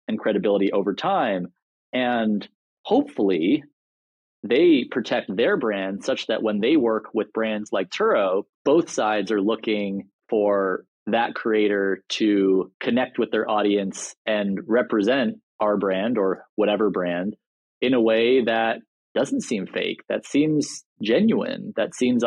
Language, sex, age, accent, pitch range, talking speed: English, male, 30-49, American, 100-120 Hz, 130 wpm